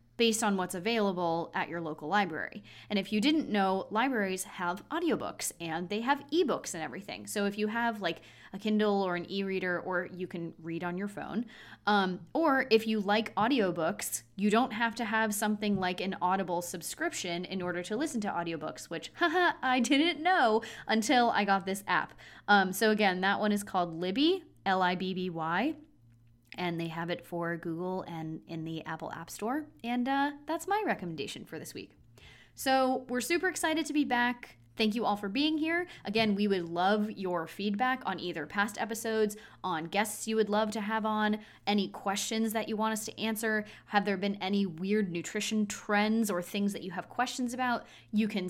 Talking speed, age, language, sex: 190 wpm, 20-39, English, female